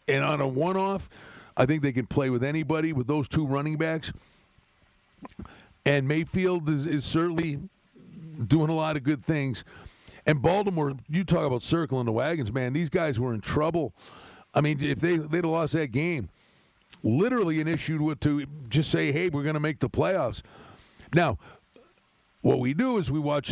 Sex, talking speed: male, 175 wpm